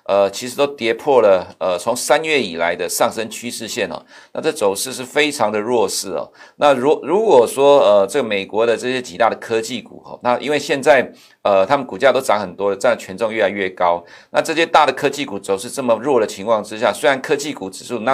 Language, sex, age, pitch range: Chinese, male, 50-69, 110-145 Hz